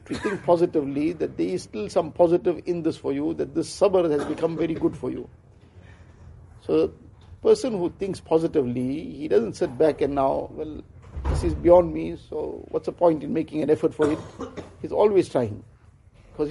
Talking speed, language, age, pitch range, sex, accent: 195 wpm, English, 50-69, 115-180 Hz, male, Indian